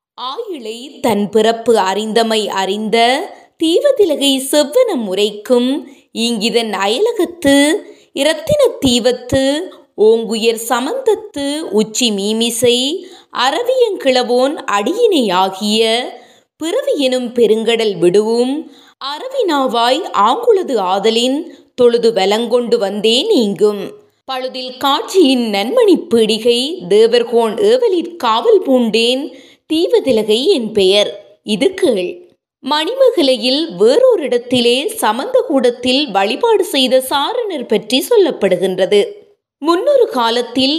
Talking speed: 50 wpm